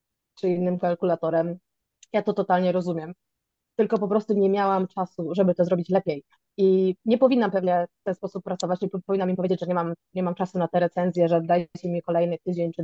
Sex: female